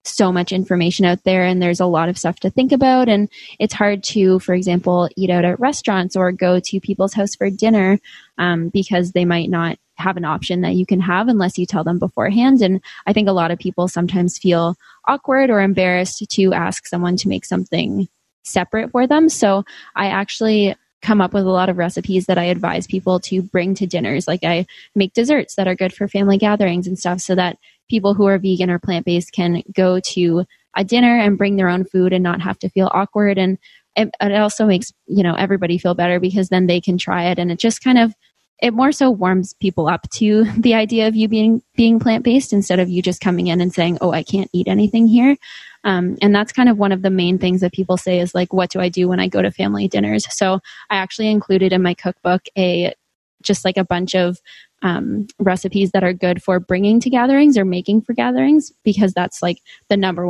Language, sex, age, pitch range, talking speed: English, female, 20-39, 180-210 Hz, 225 wpm